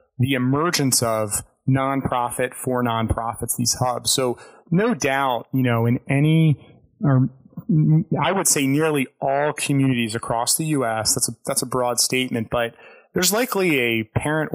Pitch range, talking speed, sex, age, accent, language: 115-135 Hz, 150 wpm, male, 30-49, American, English